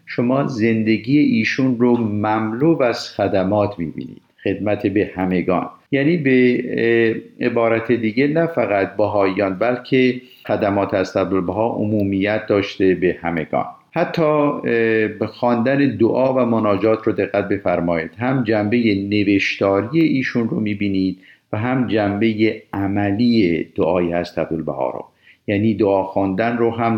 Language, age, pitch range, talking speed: Persian, 50-69, 100-125 Hz, 120 wpm